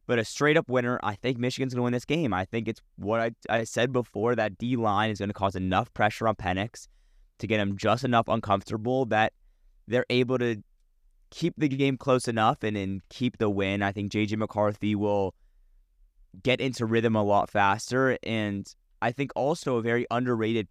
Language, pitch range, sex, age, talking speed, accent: English, 95-115 Hz, male, 20-39, 195 wpm, American